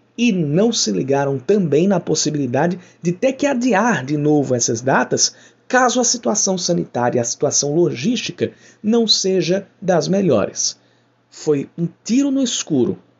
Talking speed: 145 wpm